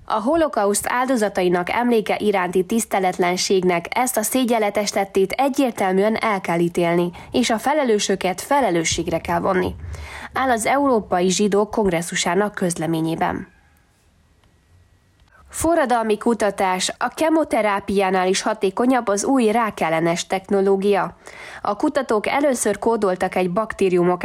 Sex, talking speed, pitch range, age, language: female, 100 wpm, 180-230 Hz, 20-39, Hungarian